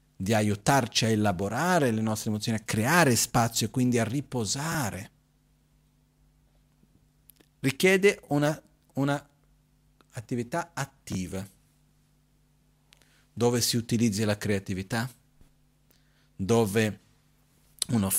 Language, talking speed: Italian, 80 wpm